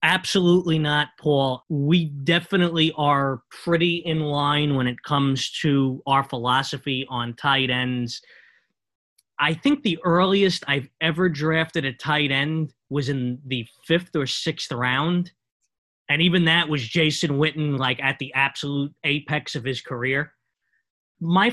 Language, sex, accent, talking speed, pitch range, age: English, male, American, 140 wpm, 135-165 Hz, 20-39